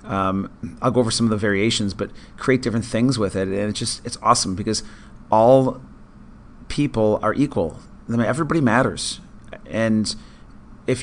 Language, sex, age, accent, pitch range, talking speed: English, male, 30-49, American, 100-125 Hz, 150 wpm